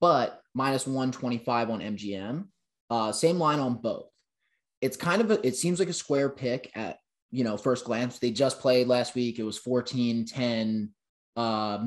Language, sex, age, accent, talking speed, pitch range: English, male, 20-39, American, 175 wpm, 115-150 Hz